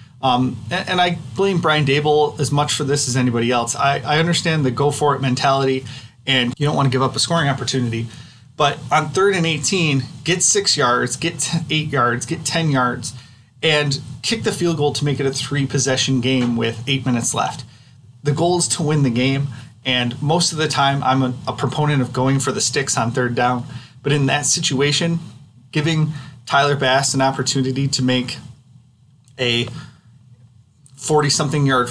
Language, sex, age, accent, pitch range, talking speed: English, male, 30-49, American, 125-150 Hz, 180 wpm